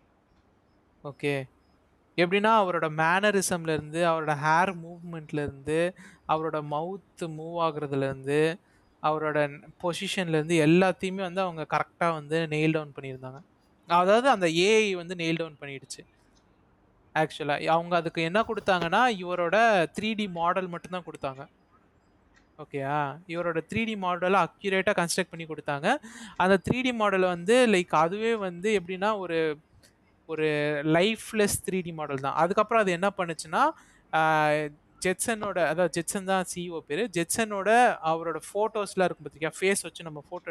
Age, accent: 20-39, native